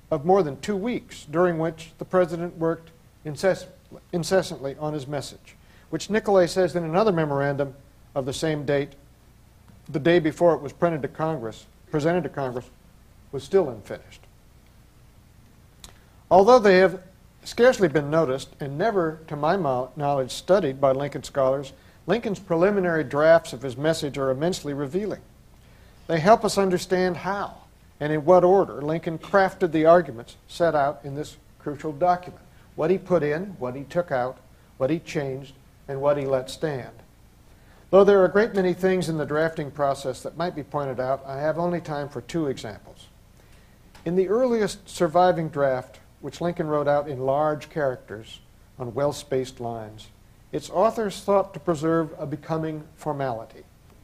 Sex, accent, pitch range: male, American, 135-175 Hz